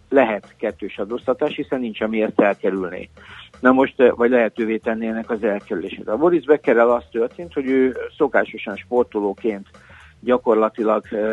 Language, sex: Hungarian, male